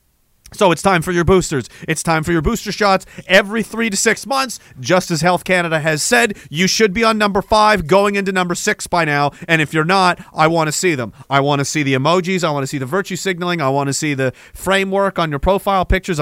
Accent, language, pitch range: American, English, 145-205 Hz